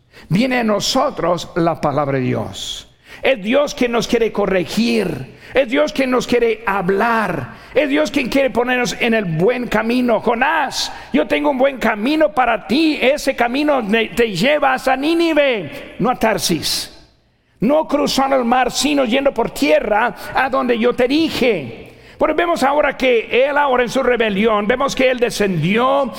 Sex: male